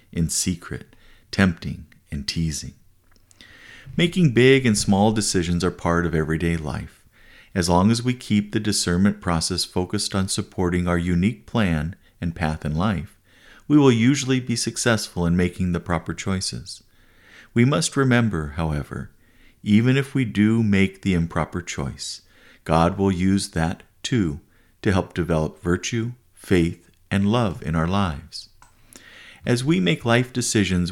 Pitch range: 85-110 Hz